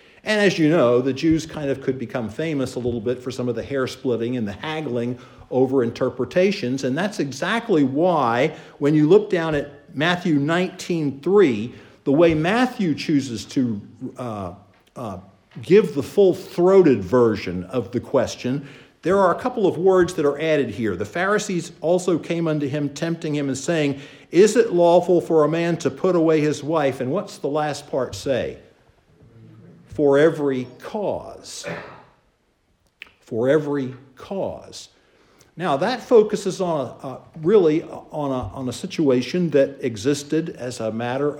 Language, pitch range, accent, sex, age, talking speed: English, 130-170 Hz, American, male, 50-69, 160 wpm